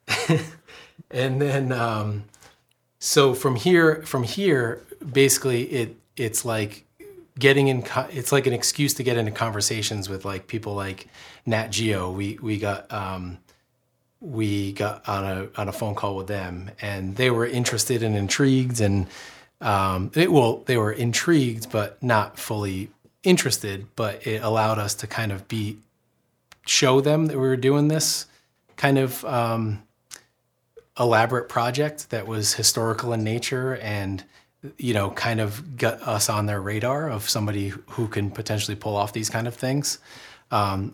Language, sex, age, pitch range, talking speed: English, male, 30-49, 105-130 Hz, 155 wpm